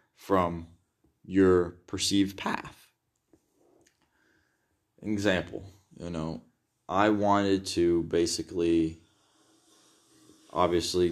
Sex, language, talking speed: male, English, 65 wpm